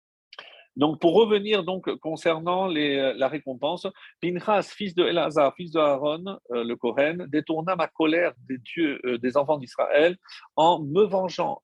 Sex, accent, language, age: male, French, French, 50-69